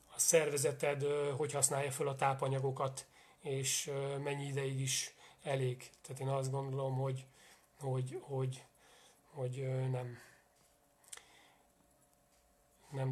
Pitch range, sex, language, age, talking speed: 135-160 Hz, male, Hungarian, 30-49, 95 wpm